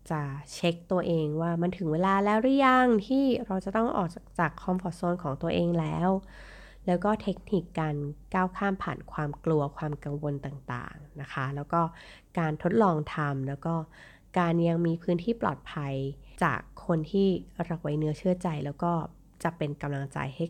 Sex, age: female, 20-39